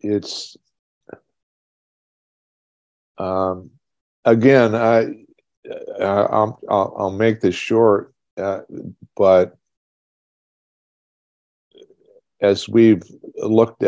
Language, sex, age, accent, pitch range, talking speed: English, male, 50-69, American, 85-105 Hz, 65 wpm